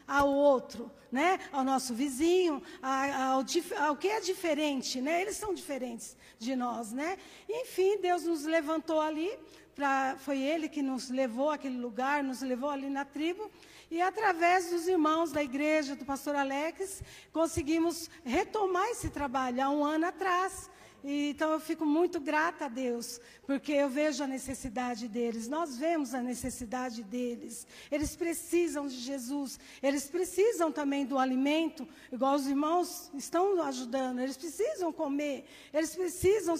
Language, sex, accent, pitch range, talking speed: Portuguese, female, Brazilian, 275-355 Hz, 145 wpm